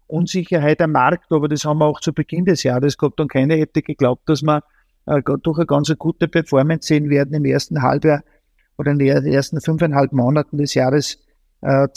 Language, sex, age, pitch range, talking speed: German, male, 50-69, 140-155 Hz, 195 wpm